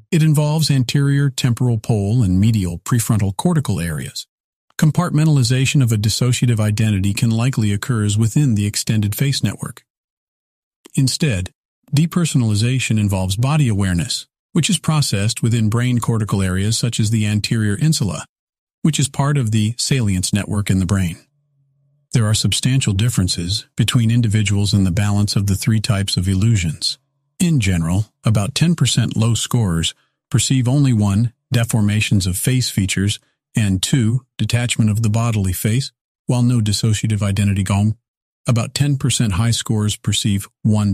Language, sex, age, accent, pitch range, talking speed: English, male, 50-69, American, 105-135 Hz, 140 wpm